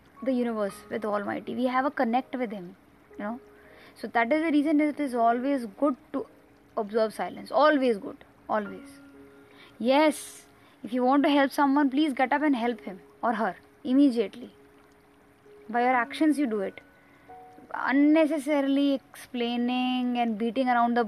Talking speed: 160 wpm